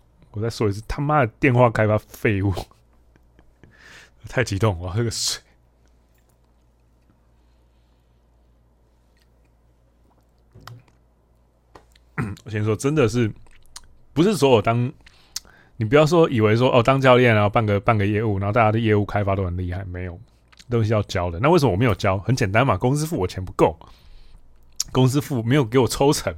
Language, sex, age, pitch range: Chinese, male, 20-39, 90-130 Hz